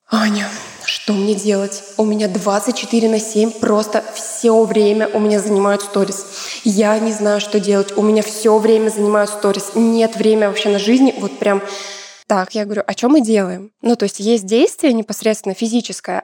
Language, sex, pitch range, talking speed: Russian, female, 200-225 Hz, 175 wpm